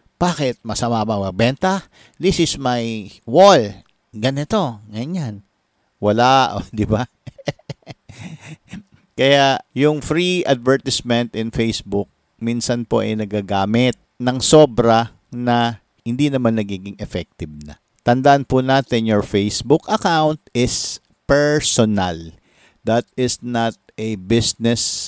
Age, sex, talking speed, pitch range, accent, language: 50-69, male, 110 wpm, 100-125 Hz, Filipino, English